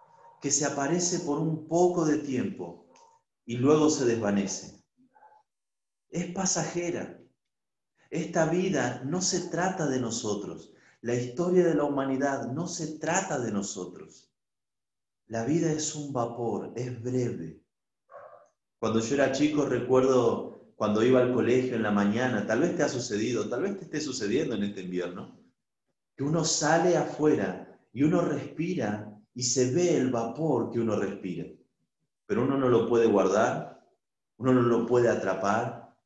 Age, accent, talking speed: 30-49, Argentinian, 150 wpm